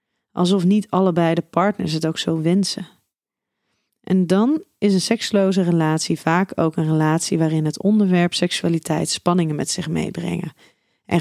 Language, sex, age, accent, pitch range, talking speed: Dutch, female, 30-49, Dutch, 170-215 Hz, 150 wpm